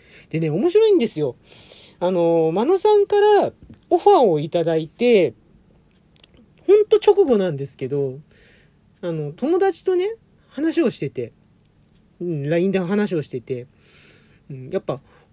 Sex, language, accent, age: male, Japanese, native, 40-59